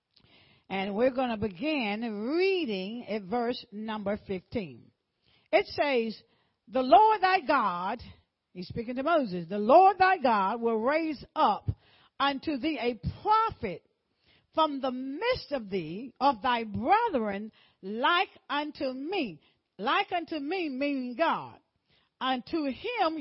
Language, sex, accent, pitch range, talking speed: English, female, American, 240-335 Hz, 125 wpm